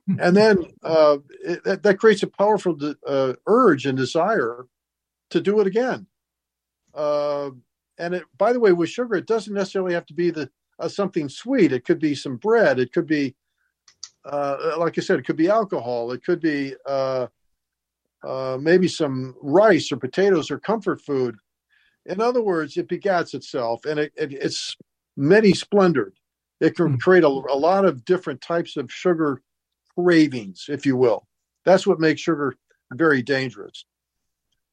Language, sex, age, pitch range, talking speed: English, male, 50-69, 135-190 Hz, 170 wpm